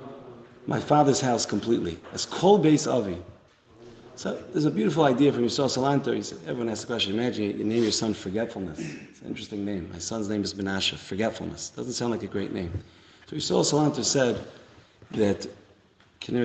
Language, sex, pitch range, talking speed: English, male, 110-145 Hz, 180 wpm